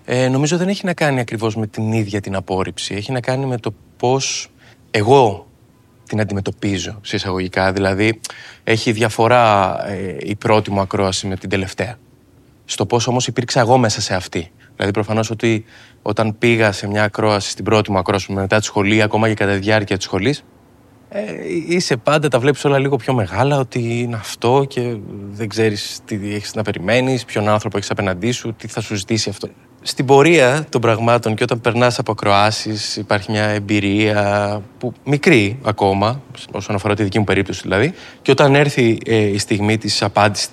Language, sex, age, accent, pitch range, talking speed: Greek, male, 20-39, native, 105-130 Hz, 175 wpm